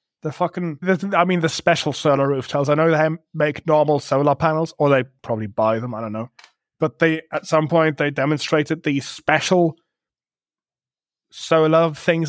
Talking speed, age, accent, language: 170 wpm, 20-39, British, English